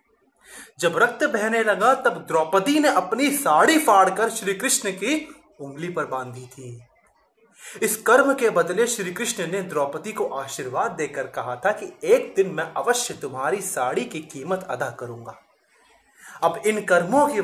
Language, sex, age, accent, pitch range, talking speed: Hindi, male, 20-39, native, 155-240 Hz, 150 wpm